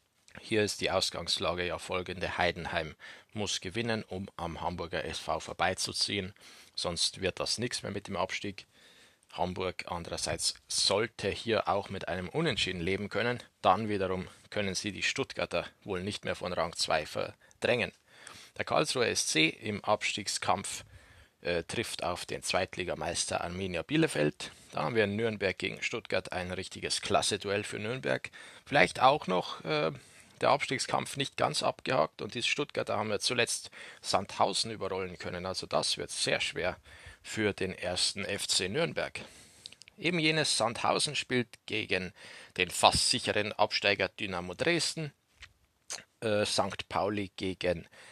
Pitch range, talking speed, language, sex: 90-105 Hz, 140 wpm, German, male